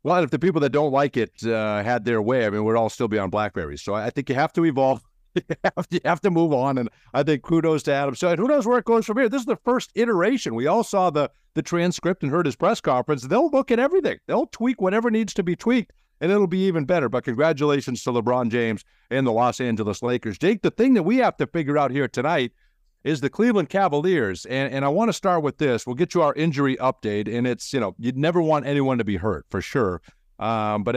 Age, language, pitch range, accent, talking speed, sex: 50-69, English, 120-175 Hz, American, 260 wpm, male